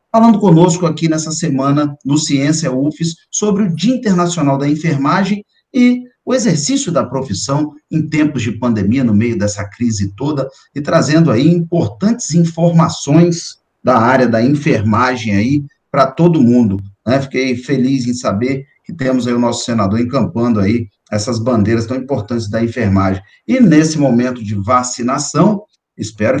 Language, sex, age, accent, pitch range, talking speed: Portuguese, male, 40-59, Brazilian, 115-170 Hz, 150 wpm